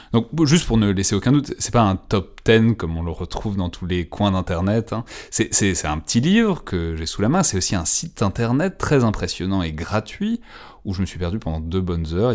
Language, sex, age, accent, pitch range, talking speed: French, male, 30-49, French, 90-115 Hz, 250 wpm